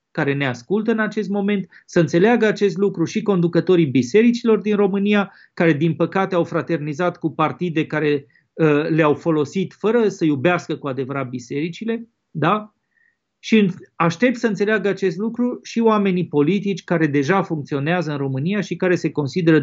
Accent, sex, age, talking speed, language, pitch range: native, male, 30-49, 155 wpm, Romanian, 170-225 Hz